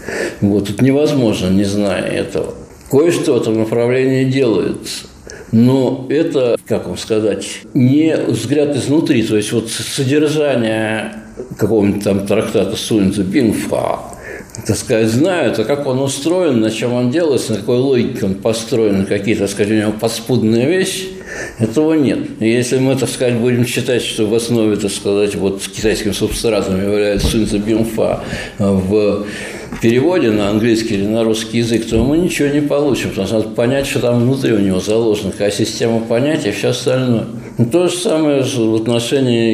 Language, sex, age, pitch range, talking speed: Russian, male, 60-79, 105-125 Hz, 155 wpm